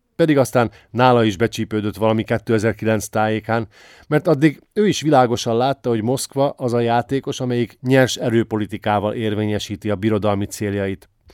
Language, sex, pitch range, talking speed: Hungarian, male, 105-125 Hz, 140 wpm